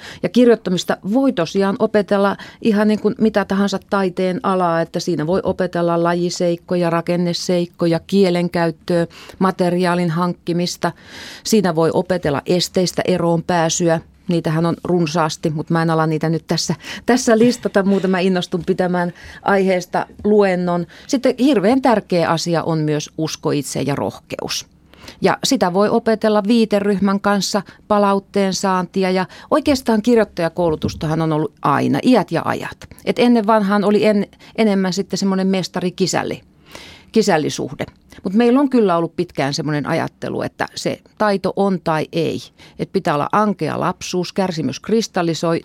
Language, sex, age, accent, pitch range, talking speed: Finnish, female, 30-49, native, 170-205 Hz, 135 wpm